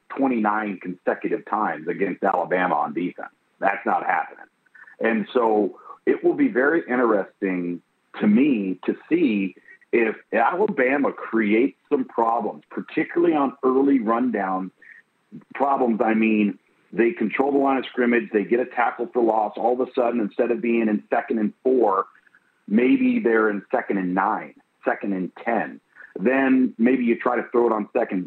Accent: American